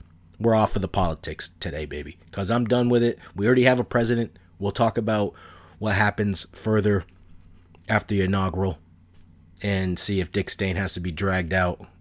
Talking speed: 180 wpm